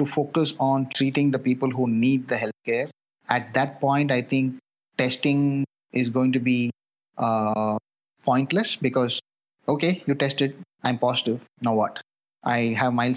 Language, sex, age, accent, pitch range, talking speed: English, male, 30-49, Indian, 130-155 Hz, 150 wpm